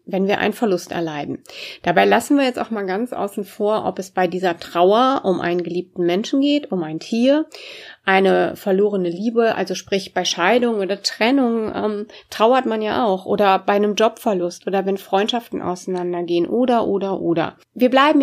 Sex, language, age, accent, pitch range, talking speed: female, German, 30-49, German, 185-240 Hz, 180 wpm